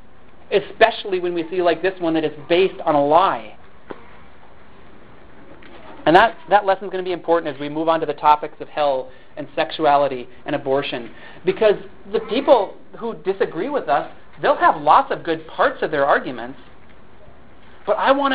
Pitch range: 150-195 Hz